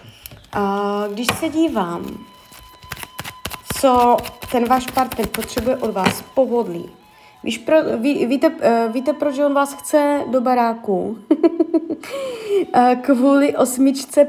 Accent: native